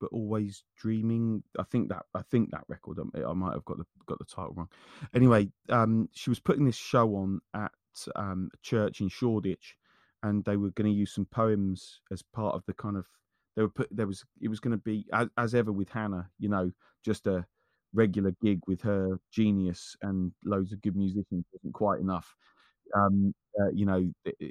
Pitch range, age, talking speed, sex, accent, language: 95-110 Hz, 30-49, 200 wpm, male, British, English